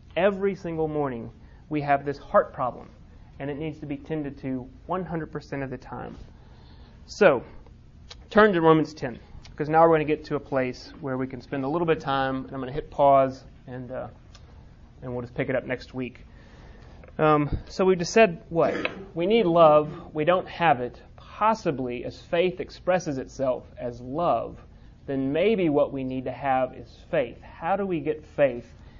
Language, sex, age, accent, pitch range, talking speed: English, male, 30-49, American, 125-155 Hz, 190 wpm